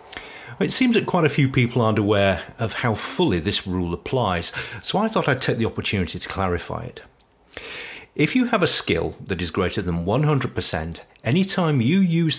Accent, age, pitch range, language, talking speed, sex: British, 40-59, 95-135 Hz, English, 190 wpm, male